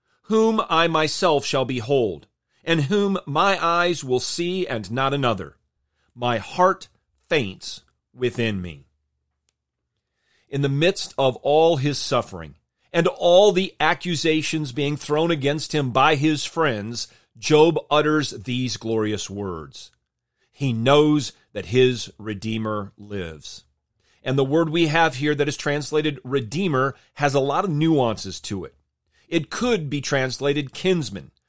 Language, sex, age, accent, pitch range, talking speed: English, male, 40-59, American, 115-160 Hz, 135 wpm